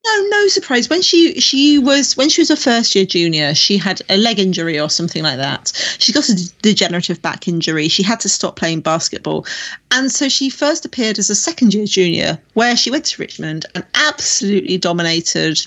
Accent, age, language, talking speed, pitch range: British, 40-59, English, 205 wpm, 170-250 Hz